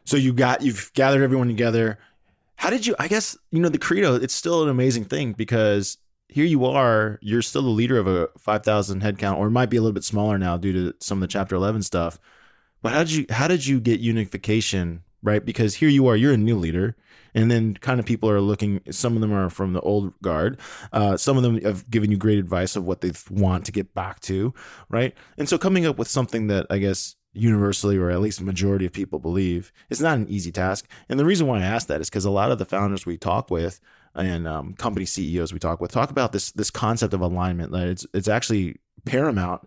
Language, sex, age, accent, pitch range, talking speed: English, male, 20-39, American, 95-120 Hz, 240 wpm